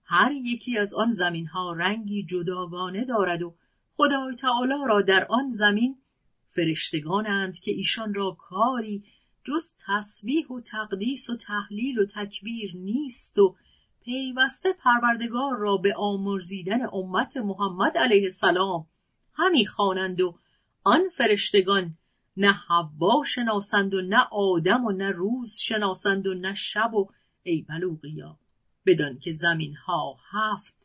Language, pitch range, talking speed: Persian, 180-235 Hz, 130 wpm